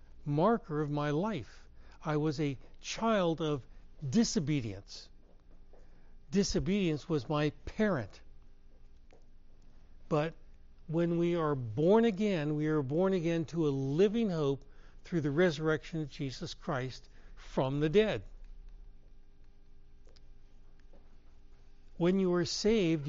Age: 60-79